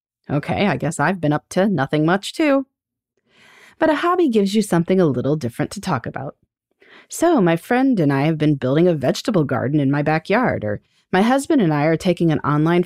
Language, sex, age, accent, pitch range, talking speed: English, female, 30-49, American, 150-250 Hz, 210 wpm